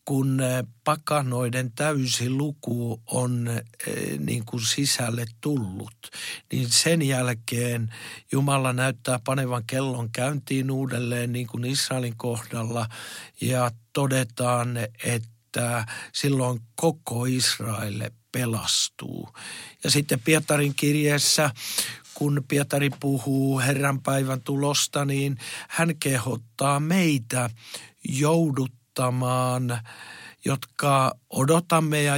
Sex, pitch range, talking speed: male, 120-140 Hz, 90 wpm